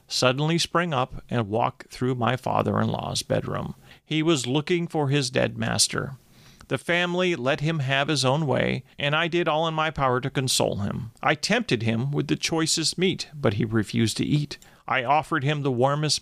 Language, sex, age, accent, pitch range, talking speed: English, male, 40-59, American, 125-155 Hz, 190 wpm